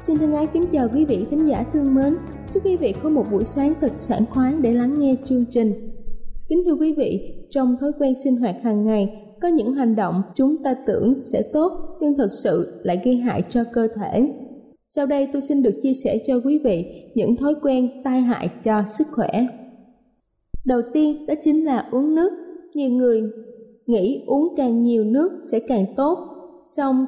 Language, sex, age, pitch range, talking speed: Vietnamese, female, 20-39, 230-290 Hz, 200 wpm